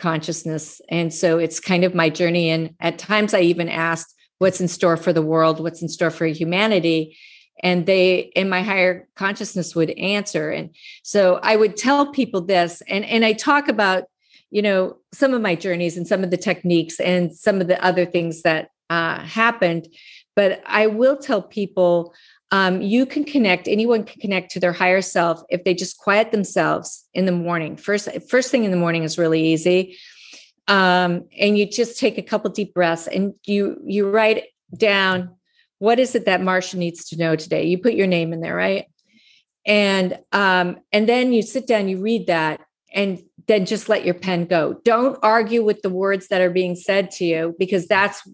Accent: American